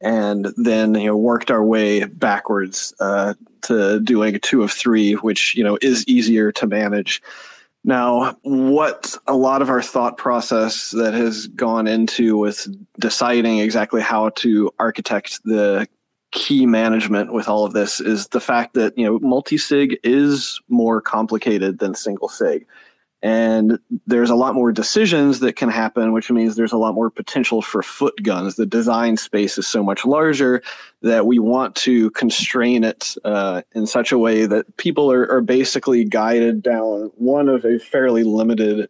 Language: English